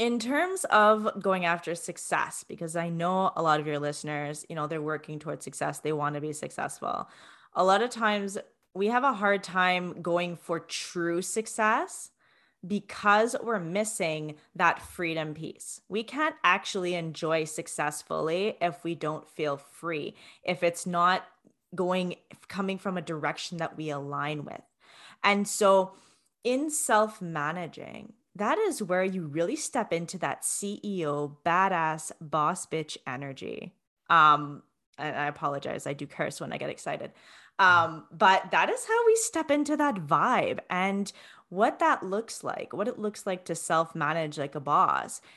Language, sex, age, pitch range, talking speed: English, female, 20-39, 160-210 Hz, 155 wpm